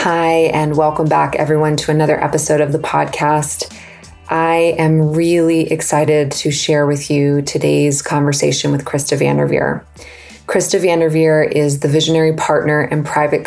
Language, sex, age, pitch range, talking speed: English, female, 20-39, 145-155 Hz, 145 wpm